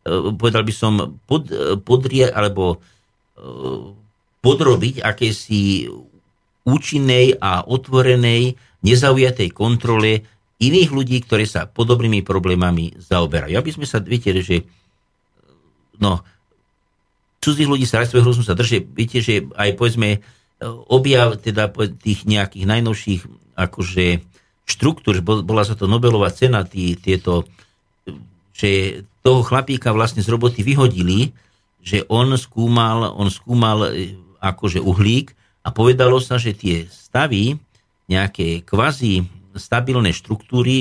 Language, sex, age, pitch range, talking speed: Slovak, male, 50-69, 95-125 Hz, 110 wpm